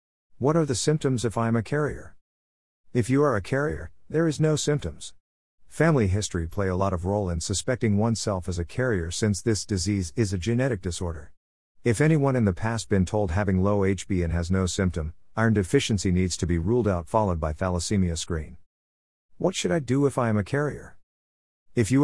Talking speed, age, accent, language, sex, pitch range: 200 wpm, 50-69, American, English, male, 90-120 Hz